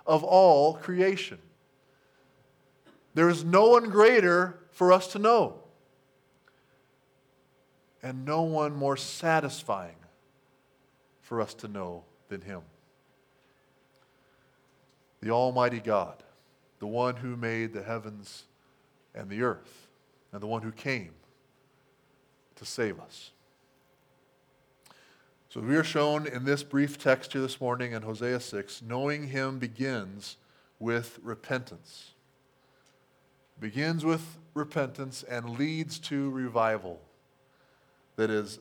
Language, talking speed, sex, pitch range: English, 110 wpm, male, 125-145 Hz